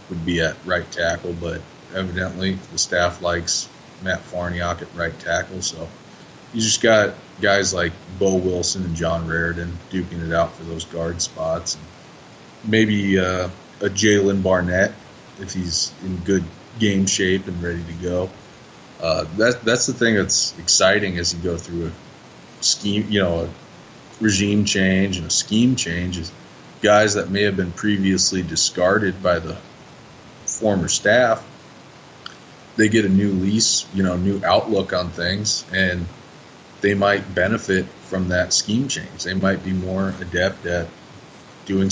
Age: 20-39